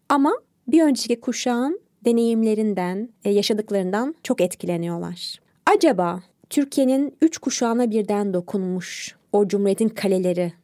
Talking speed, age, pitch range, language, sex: 95 wpm, 30-49, 185-235 Hz, Turkish, female